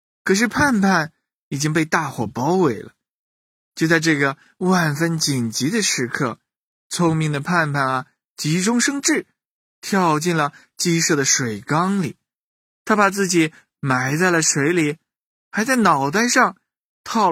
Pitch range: 125-195 Hz